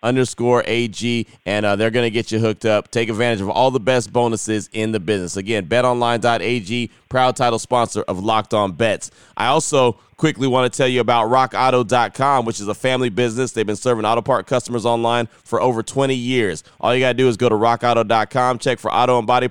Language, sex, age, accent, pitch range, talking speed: English, male, 30-49, American, 115-135 Hz, 210 wpm